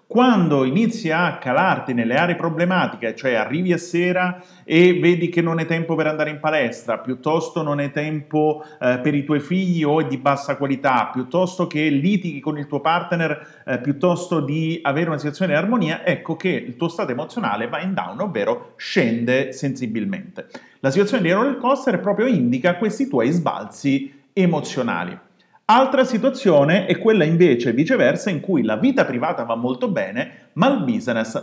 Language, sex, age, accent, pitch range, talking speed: Italian, male, 40-59, native, 145-205 Hz, 170 wpm